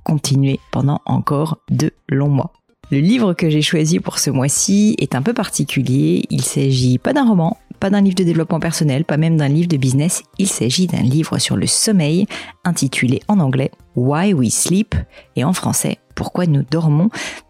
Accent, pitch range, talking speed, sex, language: French, 140-195 Hz, 200 wpm, female, French